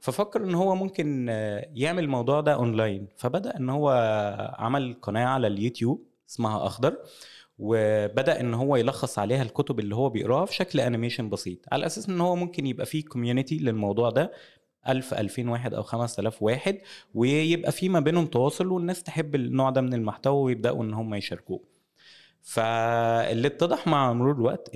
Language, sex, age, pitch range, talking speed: Arabic, male, 20-39, 110-135 Hz, 160 wpm